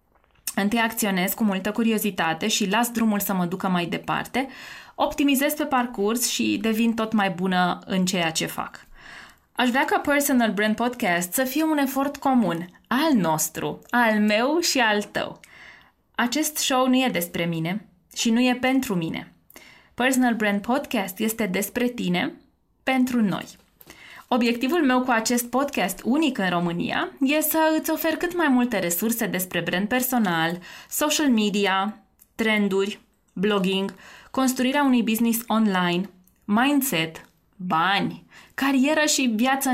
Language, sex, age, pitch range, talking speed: Romanian, female, 20-39, 190-255 Hz, 140 wpm